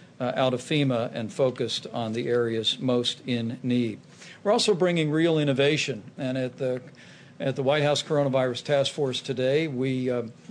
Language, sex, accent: English, male, American